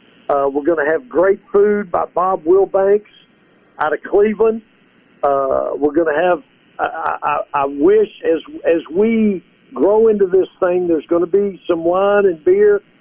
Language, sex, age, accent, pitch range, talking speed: English, male, 50-69, American, 170-220 Hz, 170 wpm